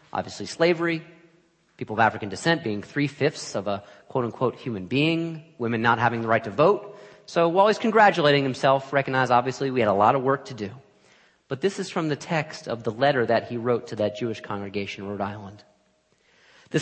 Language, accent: English, American